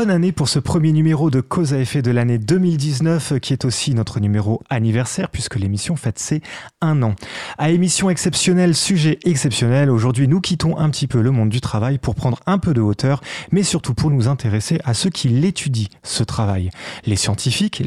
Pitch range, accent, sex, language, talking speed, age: 115-155 Hz, French, male, French, 200 wpm, 30-49